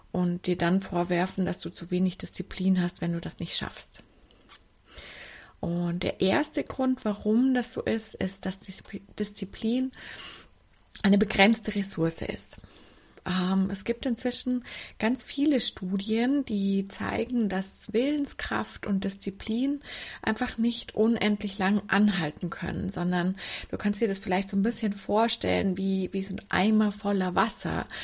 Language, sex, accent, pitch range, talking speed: German, female, German, 190-225 Hz, 140 wpm